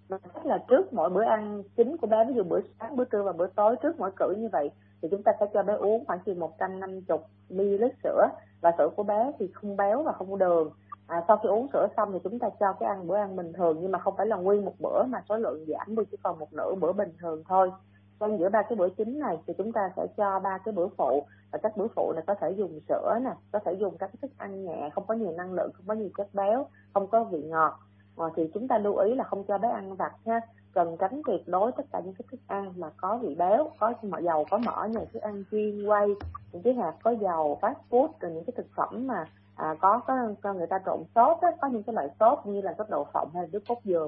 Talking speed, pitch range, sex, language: 275 wpm, 175-225 Hz, female, Vietnamese